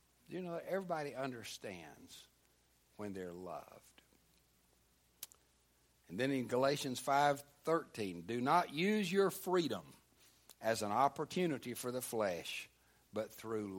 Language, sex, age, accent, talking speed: English, male, 60-79, American, 115 wpm